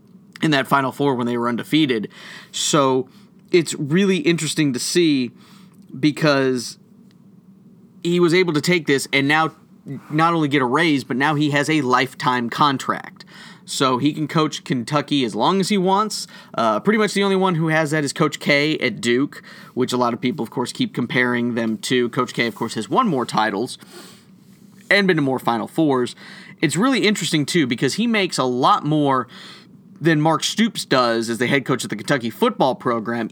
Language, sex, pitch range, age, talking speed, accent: English, male, 130-190 Hz, 30-49, 195 wpm, American